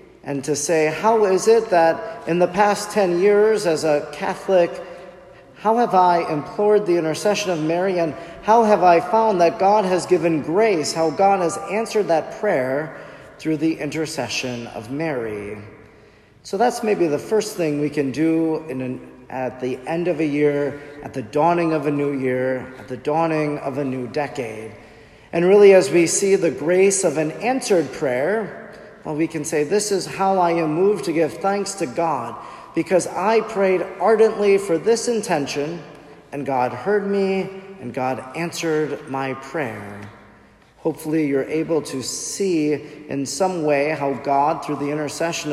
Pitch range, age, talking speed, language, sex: 140-180 Hz, 40-59, 170 wpm, English, male